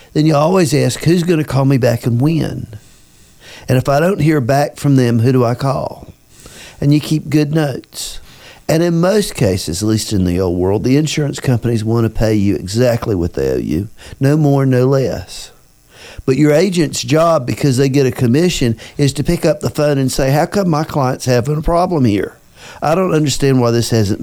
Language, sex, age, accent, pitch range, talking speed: English, male, 50-69, American, 115-150 Hz, 215 wpm